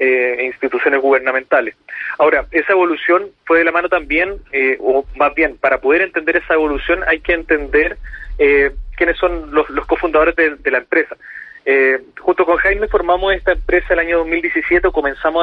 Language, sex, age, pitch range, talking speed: Spanish, male, 30-49, 150-190 Hz, 175 wpm